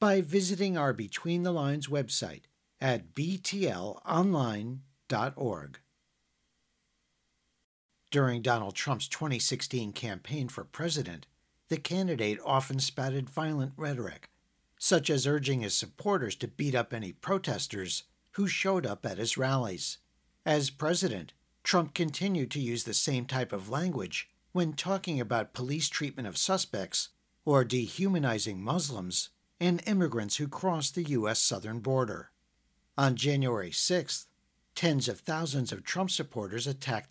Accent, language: American, English